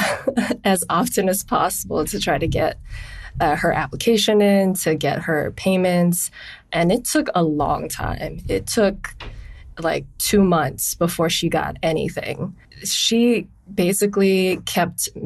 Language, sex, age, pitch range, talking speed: English, female, 20-39, 160-185 Hz, 135 wpm